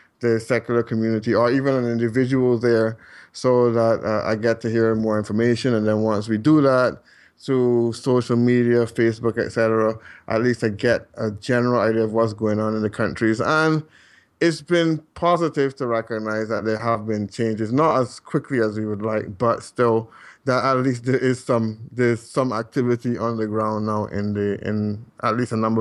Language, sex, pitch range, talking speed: English, male, 110-125 Hz, 190 wpm